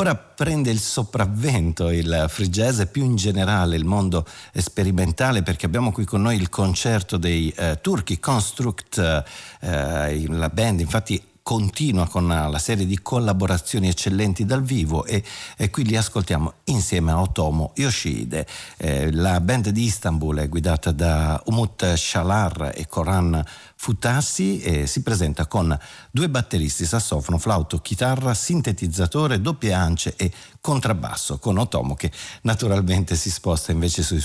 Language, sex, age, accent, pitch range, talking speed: Italian, male, 50-69, native, 85-110 Hz, 140 wpm